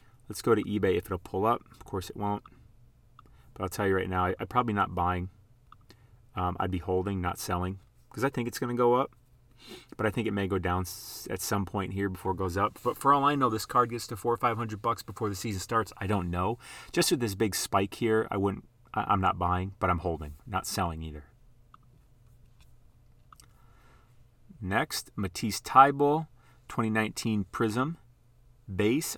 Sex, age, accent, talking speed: male, 30-49, American, 200 wpm